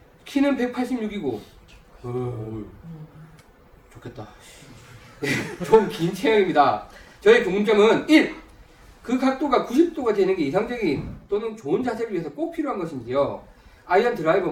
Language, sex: Korean, male